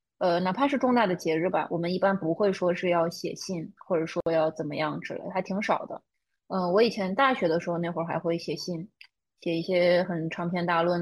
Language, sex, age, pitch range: Chinese, female, 20-39, 170-195 Hz